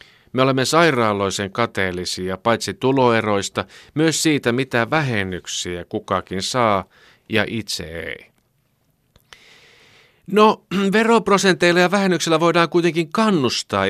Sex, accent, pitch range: male, native, 95-130 Hz